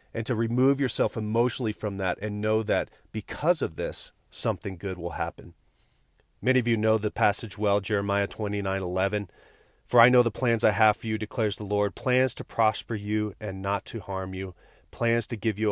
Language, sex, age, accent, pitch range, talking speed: English, male, 30-49, American, 100-120 Hz, 200 wpm